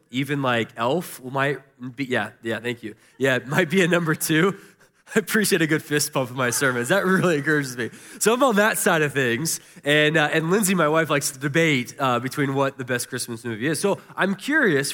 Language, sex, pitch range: English, male, 130-175 Hz